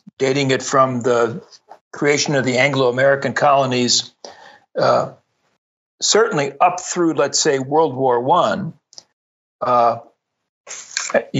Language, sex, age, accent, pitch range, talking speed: English, male, 60-79, American, 130-160 Hz, 95 wpm